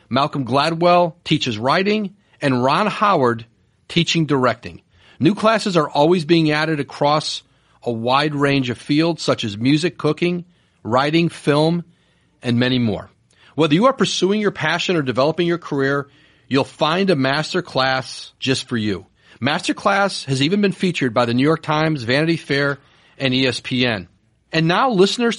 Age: 40-59